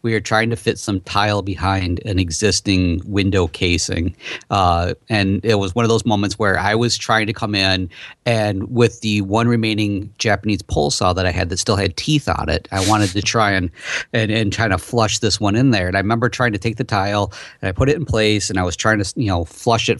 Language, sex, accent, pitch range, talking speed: English, male, American, 95-115 Hz, 245 wpm